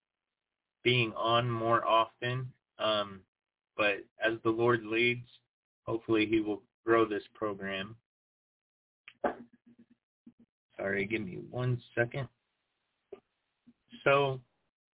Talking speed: 90 wpm